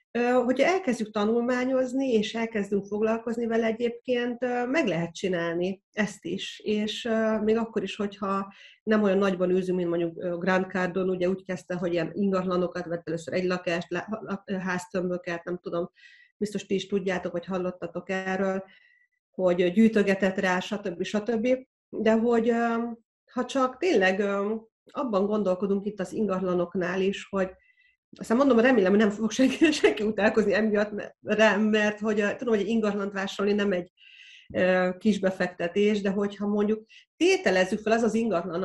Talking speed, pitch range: 145 wpm, 180-225 Hz